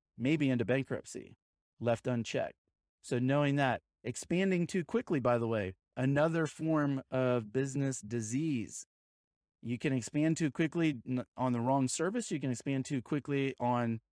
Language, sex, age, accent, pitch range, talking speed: English, male, 30-49, American, 120-140 Hz, 145 wpm